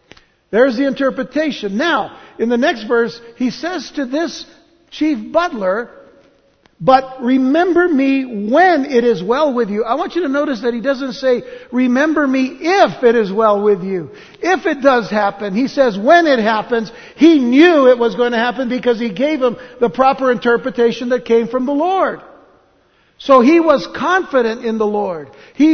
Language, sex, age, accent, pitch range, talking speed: English, male, 60-79, American, 235-295 Hz, 175 wpm